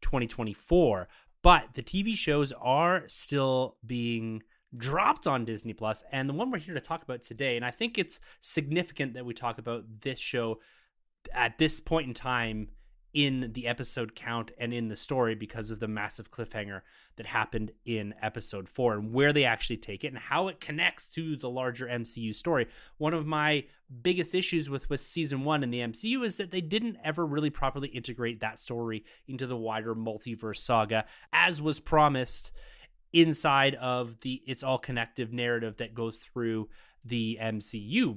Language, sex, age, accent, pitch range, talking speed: English, male, 30-49, American, 115-165 Hz, 175 wpm